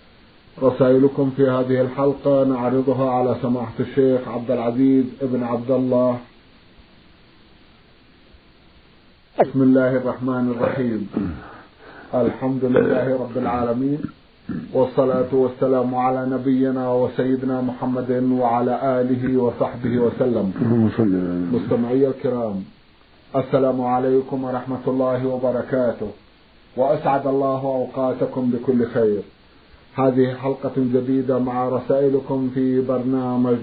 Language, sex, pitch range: Arabic, male, 125-135 Hz